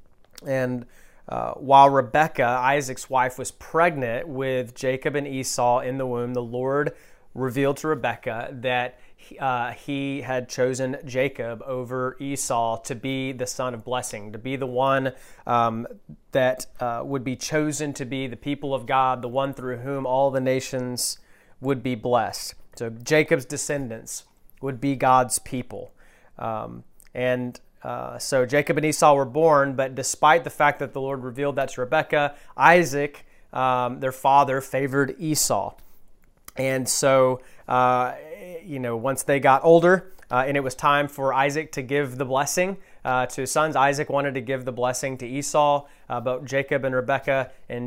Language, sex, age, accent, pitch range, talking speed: English, male, 30-49, American, 125-140 Hz, 165 wpm